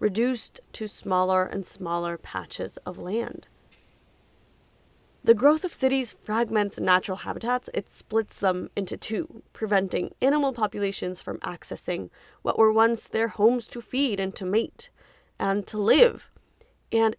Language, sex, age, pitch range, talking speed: English, female, 20-39, 185-235 Hz, 135 wpm